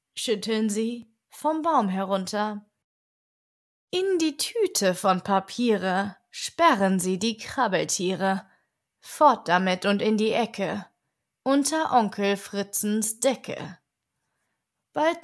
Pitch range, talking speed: 195-255 Hz, 100 wpm